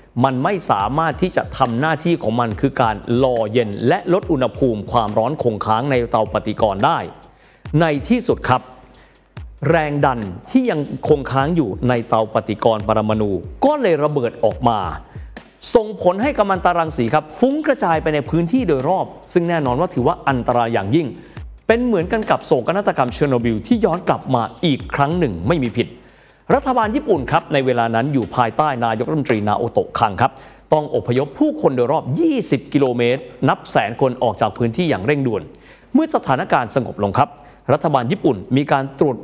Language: Thai